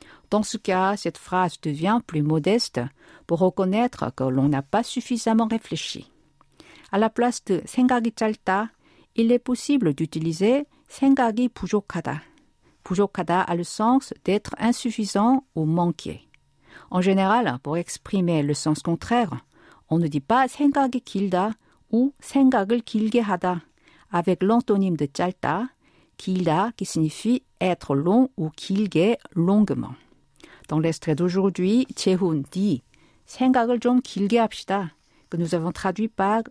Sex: female